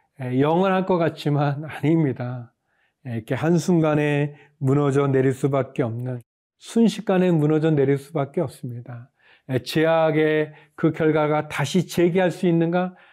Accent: native